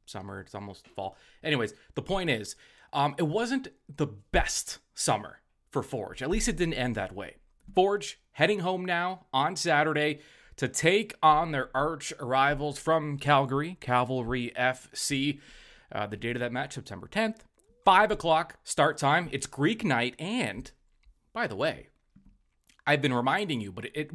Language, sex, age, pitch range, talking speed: English, male, 30-49, 125-180 Hz, 160 wpm